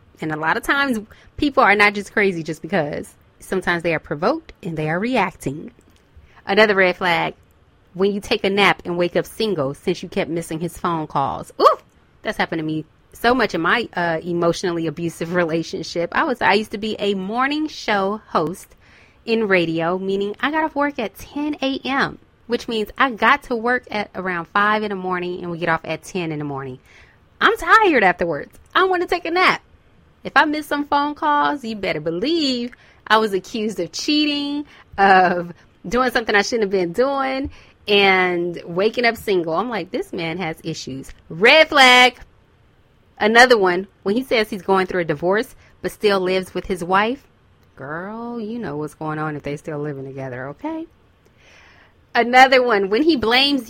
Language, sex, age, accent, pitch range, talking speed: English, female, 20-39, American, 170-245 Hz, 190 wpm